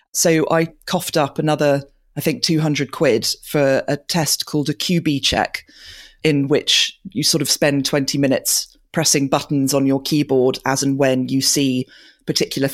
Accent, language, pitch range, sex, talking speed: British, English, 135-165 Hz, female, 165 wpm